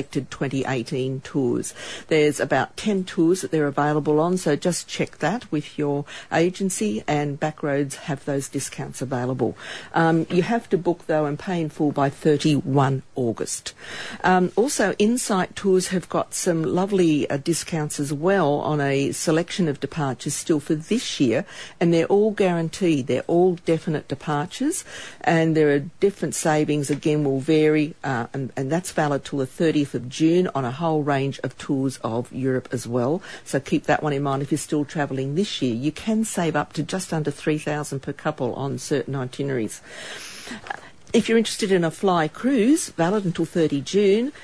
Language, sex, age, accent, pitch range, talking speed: English, female, 50-69, Australian, 140-175 Hz, 175 wpm